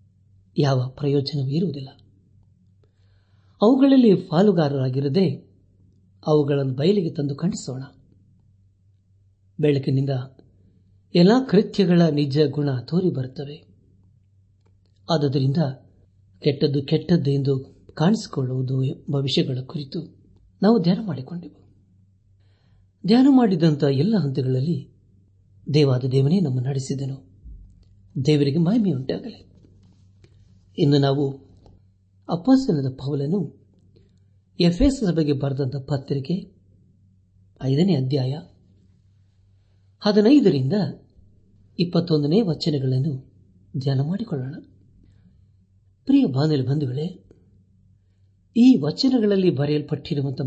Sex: male